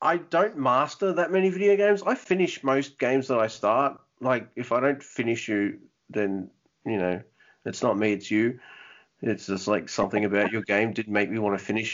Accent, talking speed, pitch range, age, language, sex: Australian, 205 wpm, 105-135 Hz, 30-49, English, male